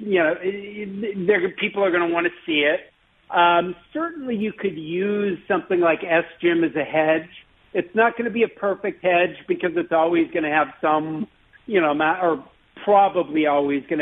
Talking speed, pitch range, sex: 190 wpm, 145-180 Hz, male